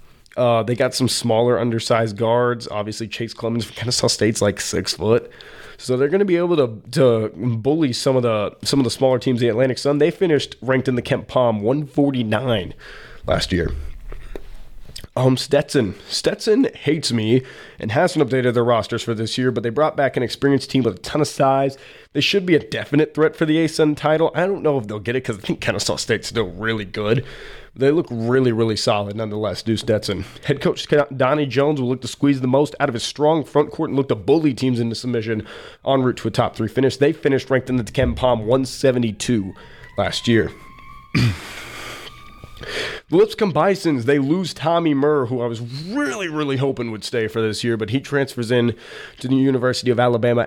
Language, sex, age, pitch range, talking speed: English, male, 20-39, 115-140 Hz, 205 wpm